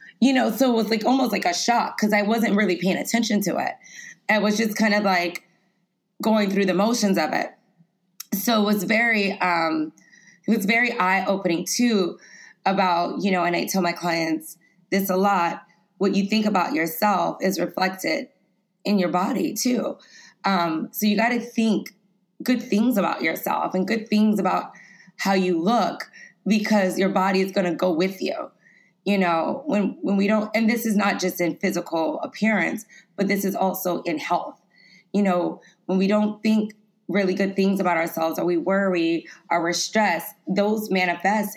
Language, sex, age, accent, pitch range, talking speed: English, female, 20-39, American, 180-215 Hz, 180 wpm